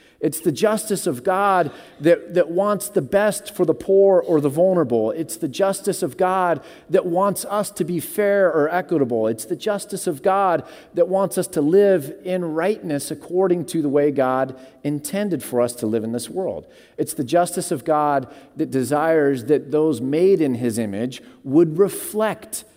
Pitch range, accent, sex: 130-175 Hz, American, male